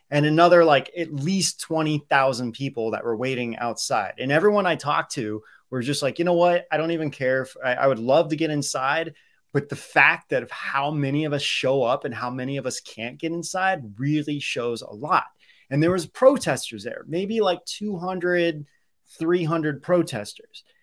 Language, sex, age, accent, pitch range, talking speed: English, male, 30-49, American, 135-180 Hz, 195 wpm